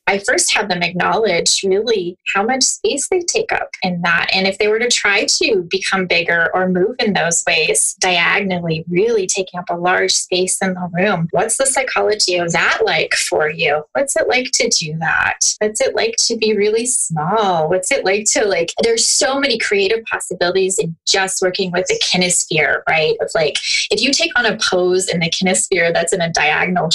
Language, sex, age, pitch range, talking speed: English, female, 20-39, 180-260 Hz, 205 wpm